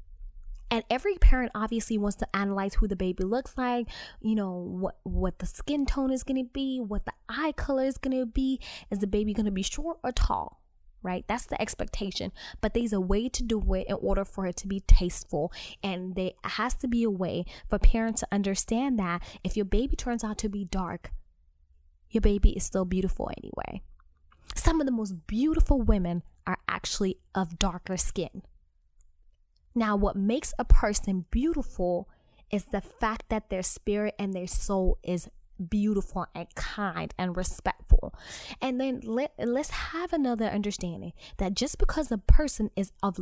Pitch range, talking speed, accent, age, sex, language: 180-240 Hz, 180 wpm, American, 20-39, female, English